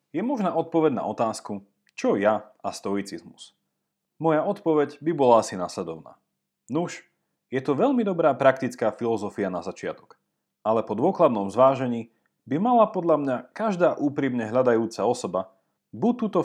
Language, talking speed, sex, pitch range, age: Slovak, 140 wpm, male, 100-160 Hz, 30-49